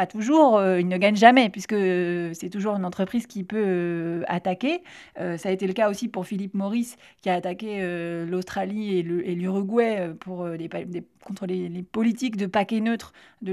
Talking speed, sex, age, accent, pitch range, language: 210 wpm, female, 30-49, French, 185-225 Hz, French